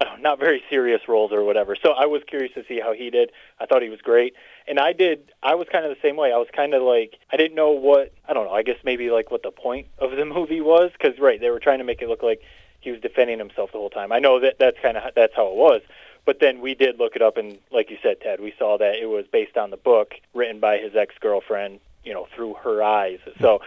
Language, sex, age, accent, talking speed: English, male, 30-49, American, 280 wpm